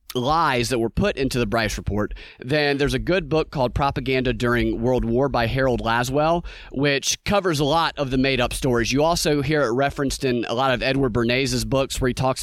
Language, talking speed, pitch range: English, 210 wpm, 130-165 Hz